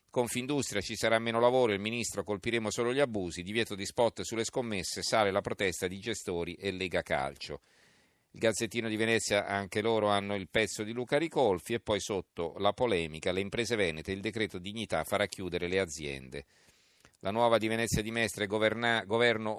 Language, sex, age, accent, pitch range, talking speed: Italian, male, 40-59, native, 95-115 Hz, 180 wpm